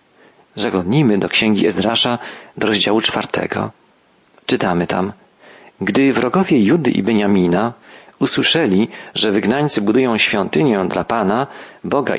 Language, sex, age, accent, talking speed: Polish, male, 40-59, native, 110 wpm